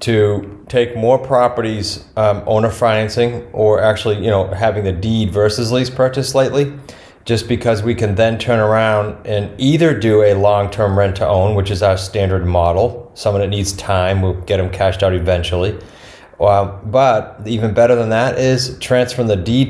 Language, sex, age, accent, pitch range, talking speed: English, male, 30-49, American, 100-115 Hz, 175 wpm